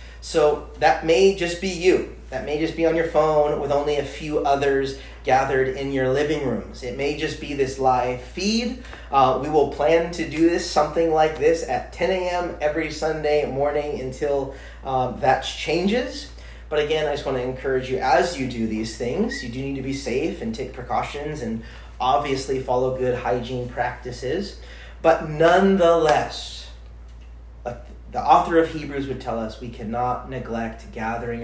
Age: 30-49